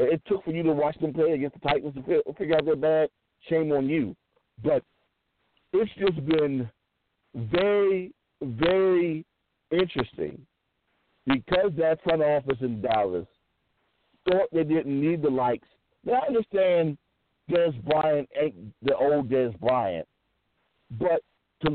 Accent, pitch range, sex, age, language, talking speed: American, 140-190 Hz, male, 50-69, English, 140 wpm